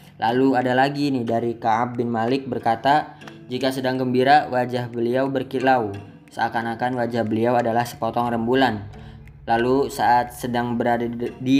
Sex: female